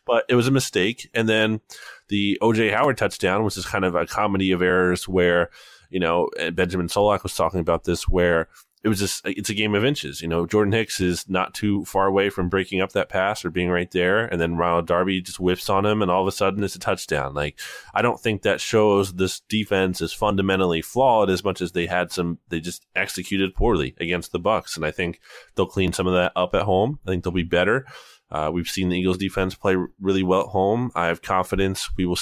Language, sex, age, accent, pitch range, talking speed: English, male, 20-39, American, 90-105 Hz, 240 wpm